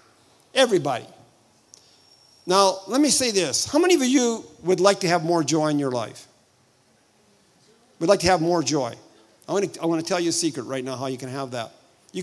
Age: 50-69